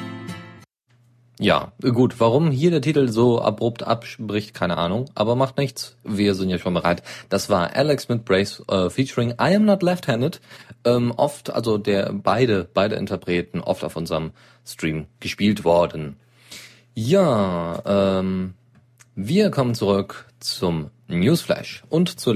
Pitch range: 95-125 Hz